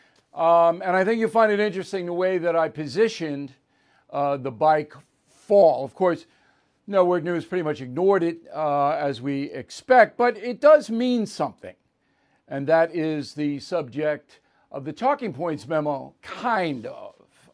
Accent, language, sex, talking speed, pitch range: American, English, male, 160 wpm, 150-195 Hz